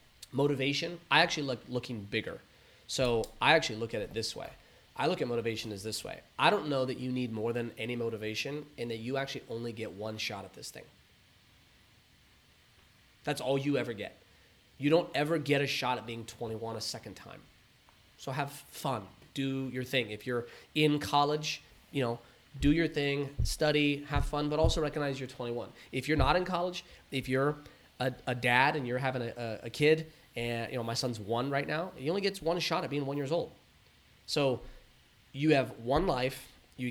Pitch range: 120-145 Hz